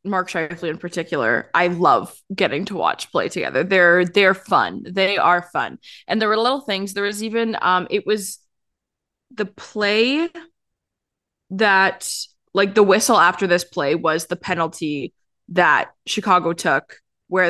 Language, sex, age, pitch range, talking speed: English, female, 20-39, 175-205 Hz, 150 wpm